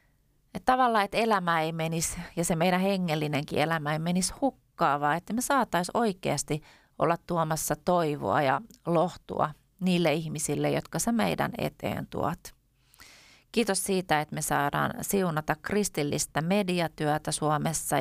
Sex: female